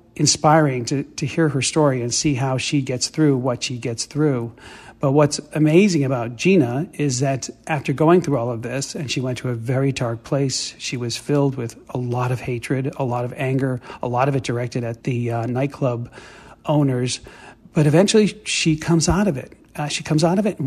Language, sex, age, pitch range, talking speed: English, male, 40-59, 125-155 Hz, 210 wpm